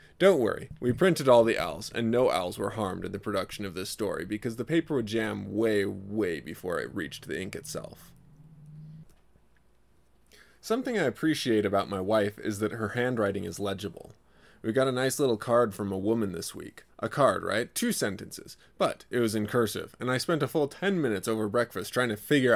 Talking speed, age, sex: 200 wpm, 20-39, male